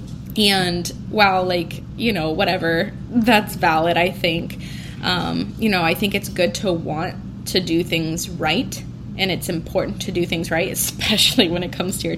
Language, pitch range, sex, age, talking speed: English, 175-215 Hz, female, 10-29, 175 wpm